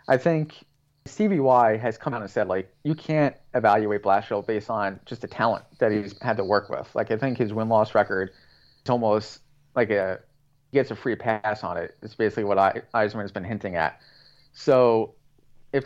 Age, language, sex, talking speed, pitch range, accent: 30-49, English, male, 190 wpm, 110-140 Hz, American